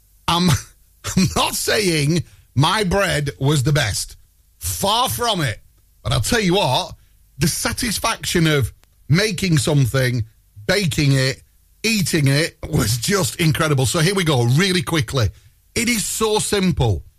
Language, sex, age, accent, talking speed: English, male, 40-59, British, 135 wpm